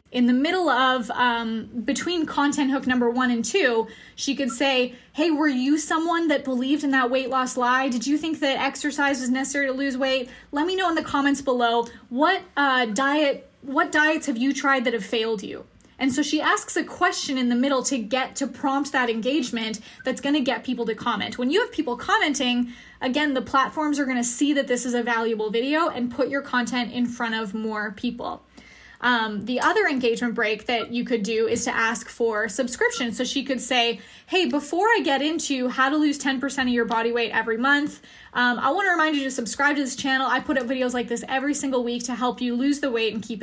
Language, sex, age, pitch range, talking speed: English, female, 10-29, 245-285 Hz, 225 wpm